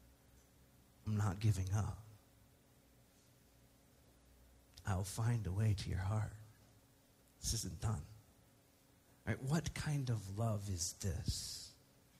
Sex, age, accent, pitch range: male, 40-59, American, 105-140 Hz